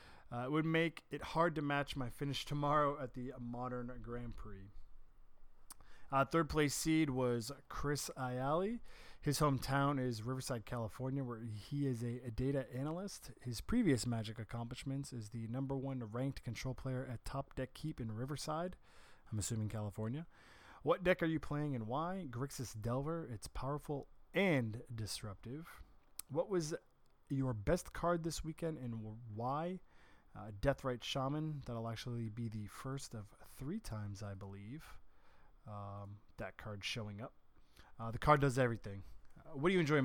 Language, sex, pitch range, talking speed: English, male, 115-150 Hz, 155 wpm